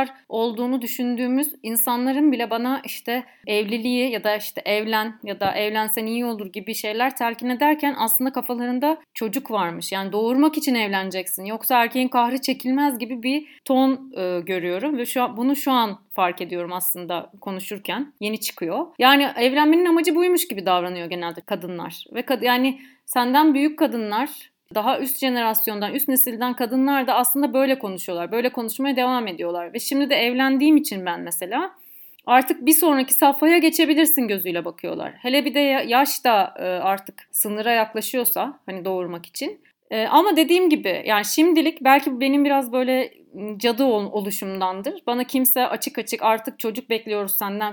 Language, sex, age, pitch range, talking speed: Turkish, female, 30-49, 215-275 Hz, 155 wpm